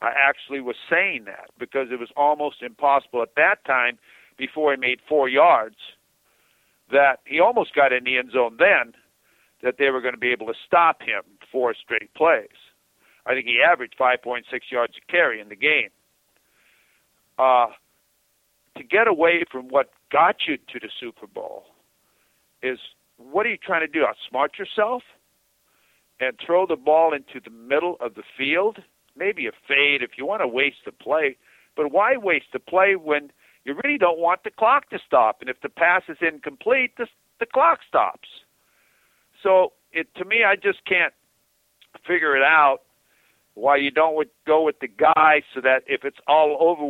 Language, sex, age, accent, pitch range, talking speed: English, male, 50-69, American, 130-165 Hz, 180 wpm